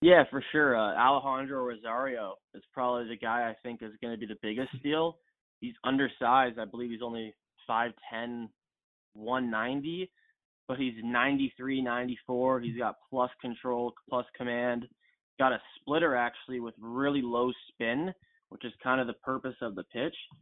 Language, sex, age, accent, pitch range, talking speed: English, male, 20-39, American, 115-130 Hz, 160 wpm